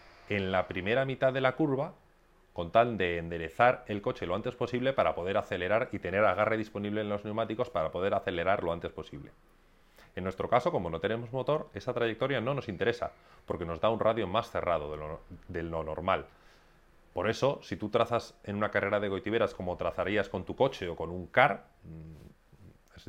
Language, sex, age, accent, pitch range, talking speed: Spanish, male, 30-49, Spanish, 90-135 Hz, 195 wpm